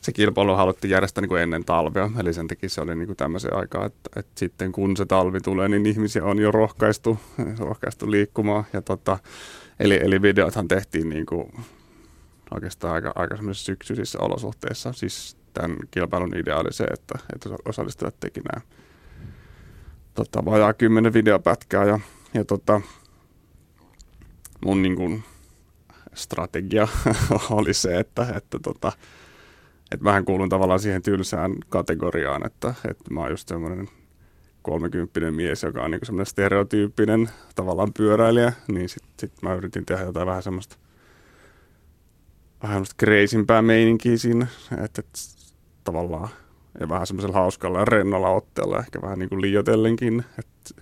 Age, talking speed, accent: 30-49, 130 wpm, native